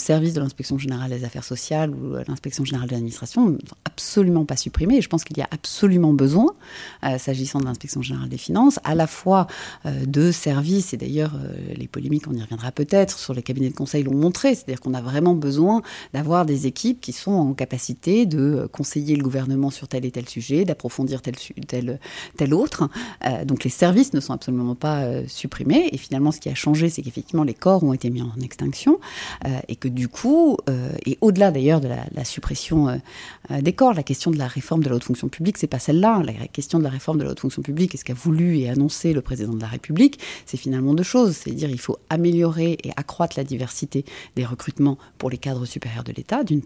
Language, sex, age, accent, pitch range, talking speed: French, female, 30-49, French, 130-165 Hz, 225 wpm